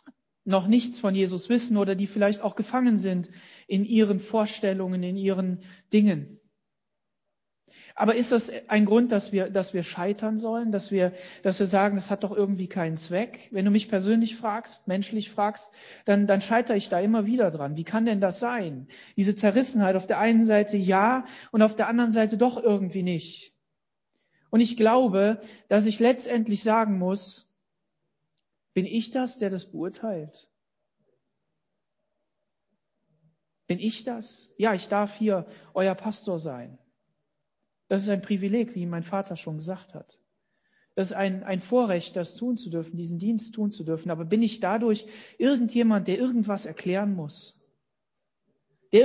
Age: 40-59